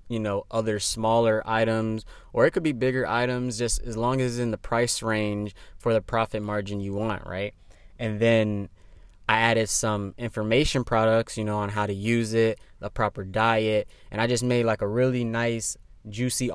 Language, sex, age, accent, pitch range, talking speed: English, male, 20-39, American, 105-115 Hz, 190 wpm